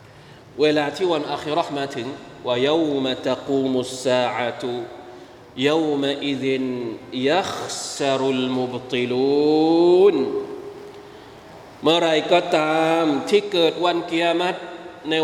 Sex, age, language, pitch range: male, 20-39, Thai, 150-220 Hz